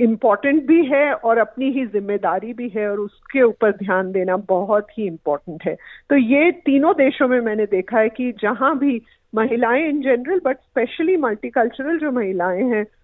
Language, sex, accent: Hindi, female, native